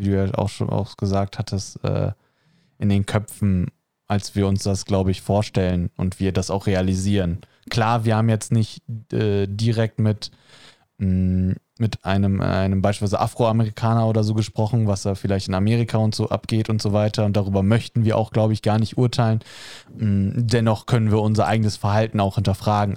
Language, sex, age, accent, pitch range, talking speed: German, male, 20-39, German, 100-115 Hz, 185 wpm